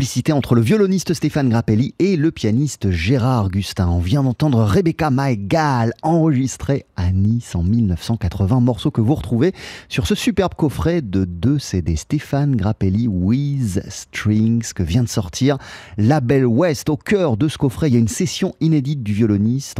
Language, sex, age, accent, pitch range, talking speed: French, male, 30-49, French, 105-155 Hz, 165 wpm